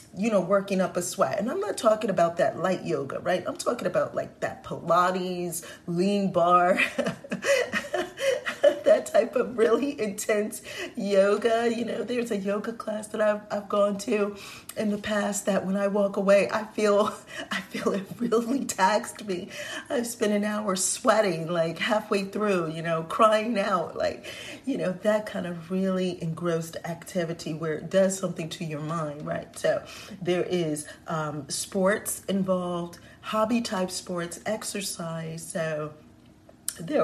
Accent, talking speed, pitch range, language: American, 155 wpm, 165-210 Hz, English